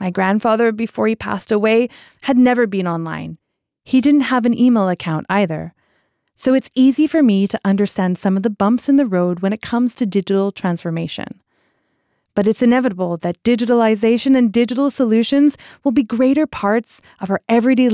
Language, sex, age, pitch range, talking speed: English, female, 20-39, 195-255 Hz, 175 wpm